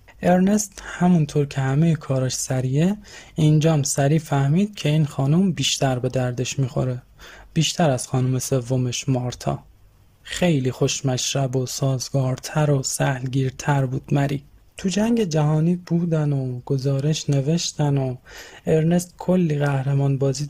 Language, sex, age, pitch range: Persian, male, 20-39, 135-165 Hz